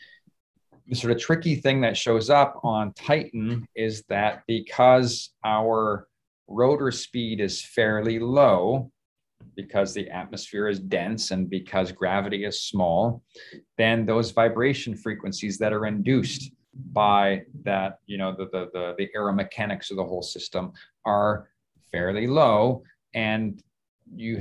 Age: 40-59